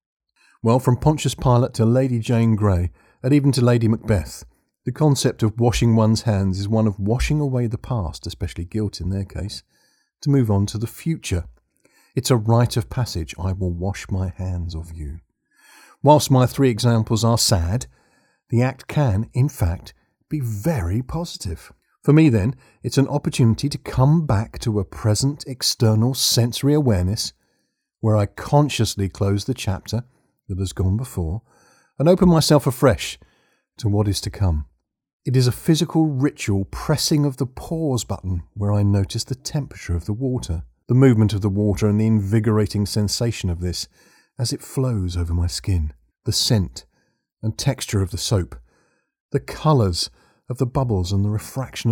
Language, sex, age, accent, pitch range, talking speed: English, male, 40-59, British, 100-130 Hz, 170 wpm